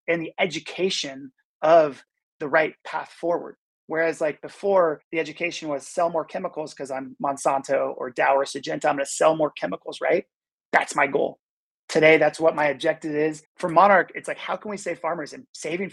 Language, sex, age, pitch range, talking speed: English, male, 30-49, 140-175 Hz, 190 wpm